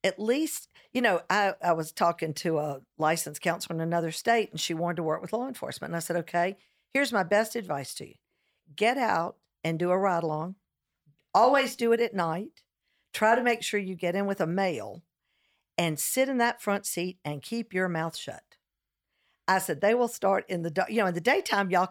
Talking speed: 220 wpm